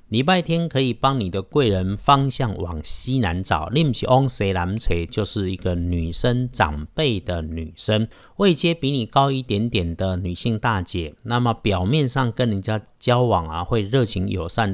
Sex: male